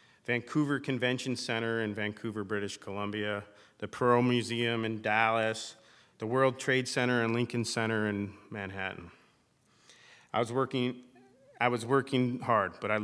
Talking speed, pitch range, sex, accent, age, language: 130 wpm, 105-120 Hz, male, American, 40-59, English